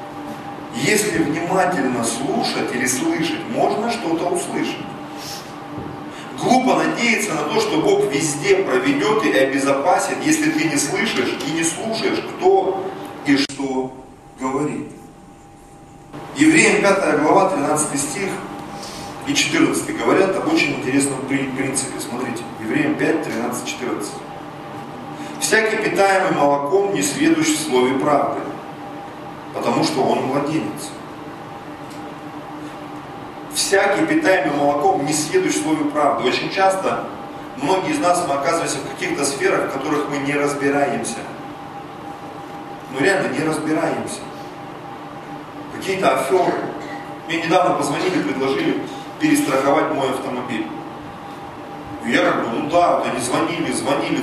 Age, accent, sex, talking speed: 40-59, native, male, 110 wpm